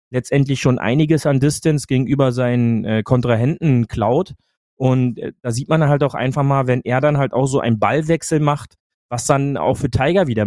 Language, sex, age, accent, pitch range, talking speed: German, male, 30-49, German, 120-140 Hz, 185 wpm